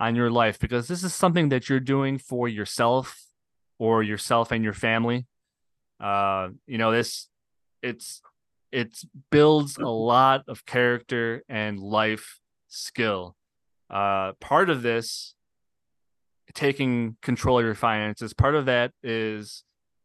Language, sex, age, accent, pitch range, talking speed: English, male, 20-39, American, 105-125 Hz, 130 wpm